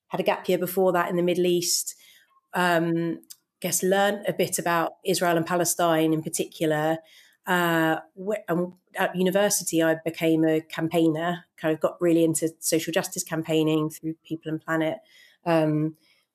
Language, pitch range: English, 155-180 Hz